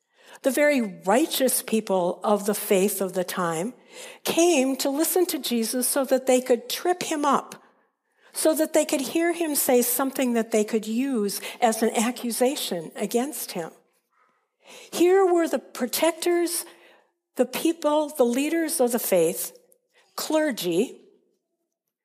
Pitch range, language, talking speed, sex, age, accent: 235-325 Hz, English, 140 wpm, female, 60-79, American